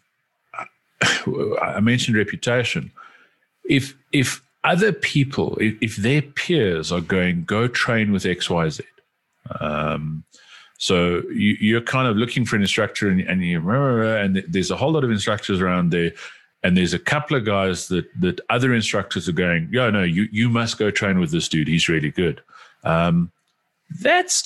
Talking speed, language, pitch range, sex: 165 wpm, English, 95-140 Hz, male